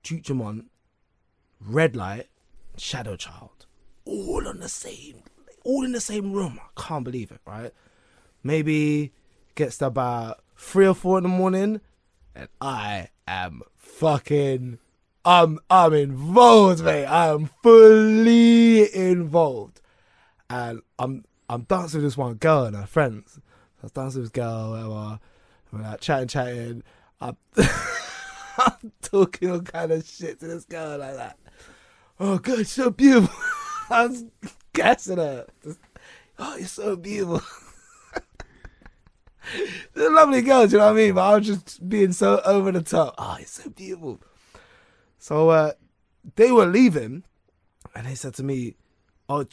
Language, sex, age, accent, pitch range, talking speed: English, male, 20-39, British, 130-215 Hz, 150 wpm